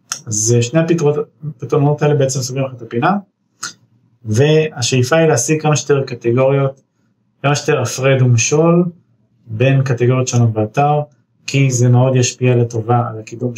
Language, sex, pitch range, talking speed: Hebrew, male, 115-140 Hz, 135 wpm